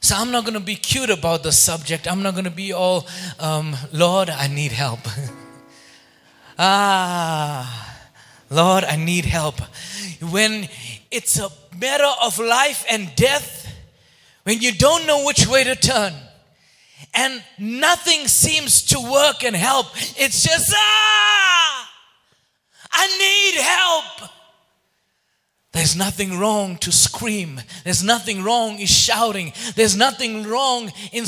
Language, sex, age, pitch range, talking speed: English, male, 30-49, 155-230 Hz, 130 wpm